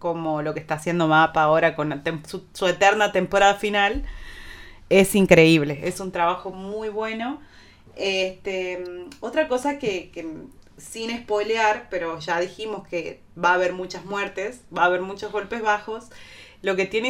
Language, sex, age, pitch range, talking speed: Spanish, female, 30-49, 175-210 Hz, 155 wpm